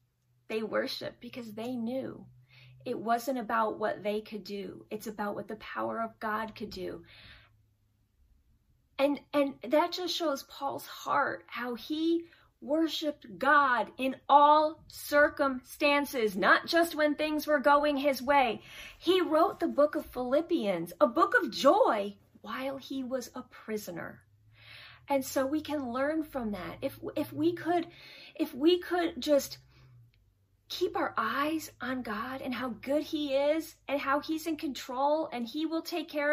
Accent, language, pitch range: American, English, 210-315 Hz